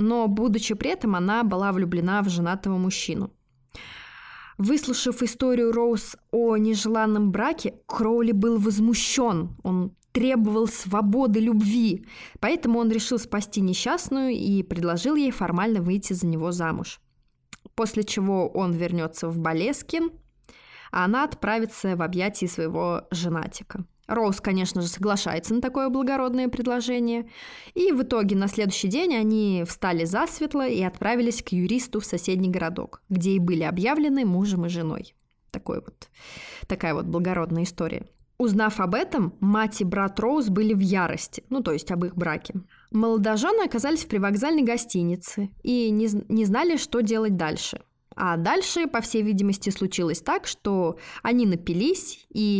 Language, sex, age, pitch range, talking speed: Russian, female, 20-39, 185-235 Hz, 140 wpm